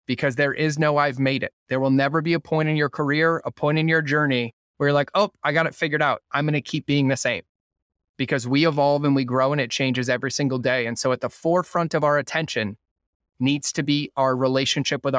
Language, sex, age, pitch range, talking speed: English, male, 20-39, 130-155 Hz, 245 wpm